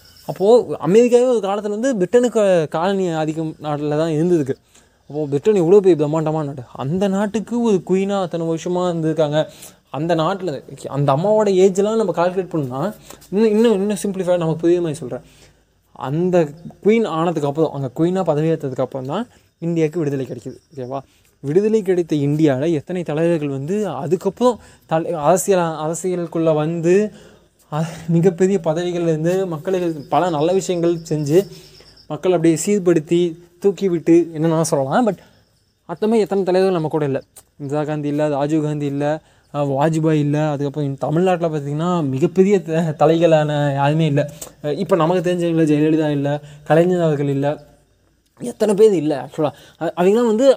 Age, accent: 20-39, native